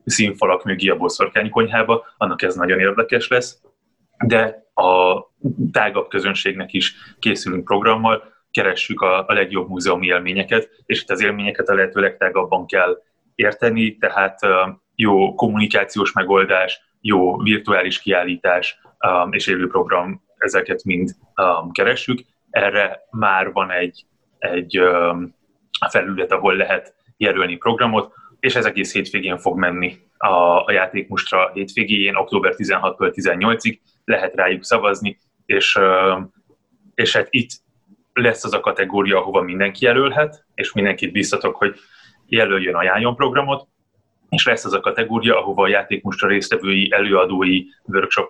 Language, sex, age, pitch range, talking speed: Hungarian, male, 20-39, 90-115 Hz, 120 wpm